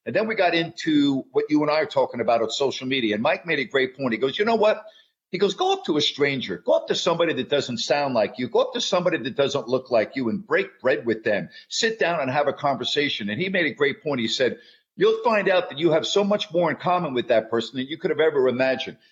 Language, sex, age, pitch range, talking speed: English, male, 50-69, 140-220 Hz, 285 wpm